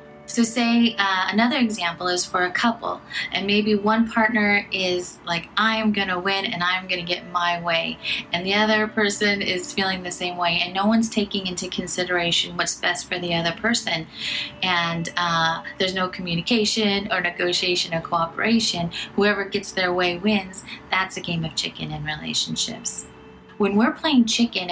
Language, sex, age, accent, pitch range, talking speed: English, female, 30-49, American, 165-205 Hz, 175 wpm